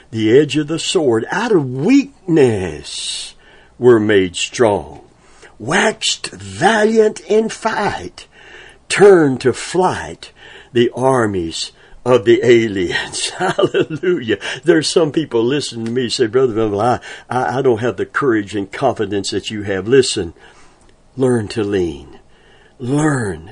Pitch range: 105-150 Hz